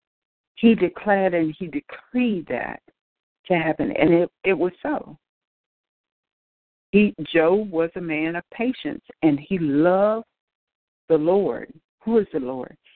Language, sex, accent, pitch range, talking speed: English, female, American, 155-190 Hz, 135 wpm